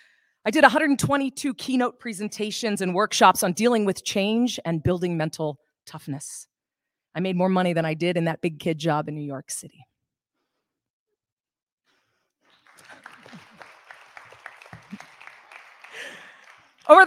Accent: American